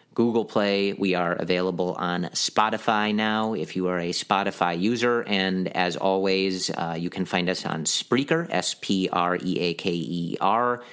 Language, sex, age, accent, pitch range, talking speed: English, male, 40-59, American, 90-100 Hz, 175 wpm